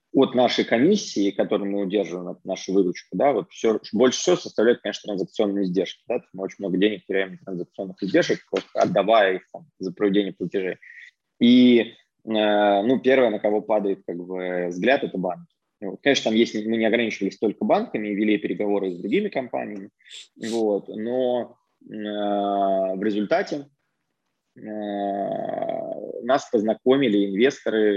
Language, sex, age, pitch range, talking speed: Russian, male, 20-39, 100-130 Hz, 145 wpm